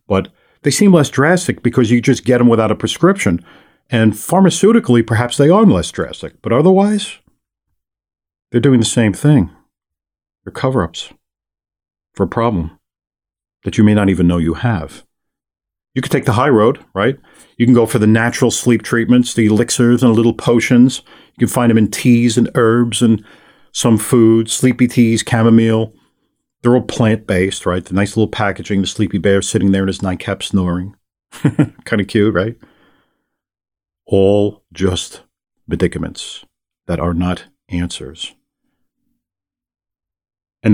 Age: 40-59